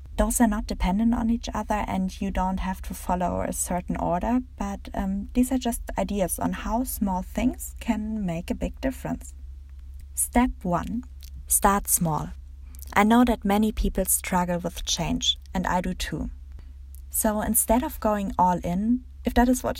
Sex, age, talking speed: female, 20-39, 175 wpm